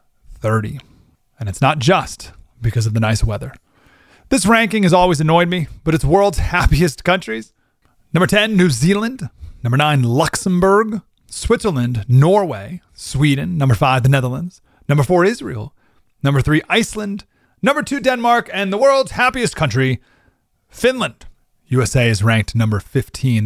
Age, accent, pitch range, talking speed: 30-49, American, 120-180 Hz, 140 wpm